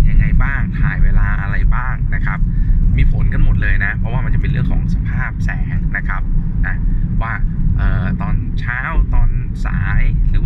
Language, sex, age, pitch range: Thai, male, 20-39, 95-125 Hz